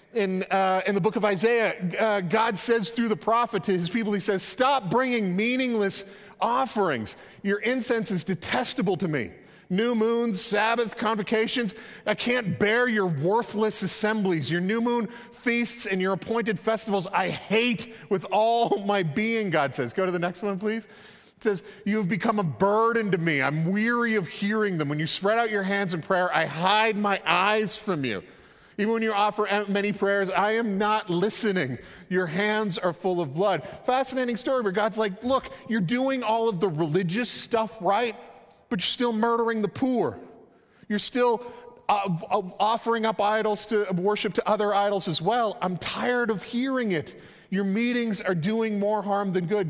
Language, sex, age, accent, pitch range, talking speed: English, male, 40-59, American, 190-230 Hz, 180 wpm